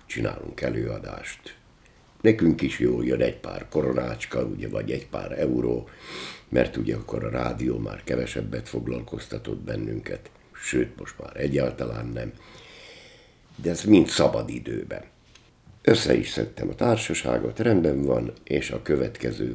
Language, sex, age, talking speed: Hungarian, male, 60-79, 135 wpm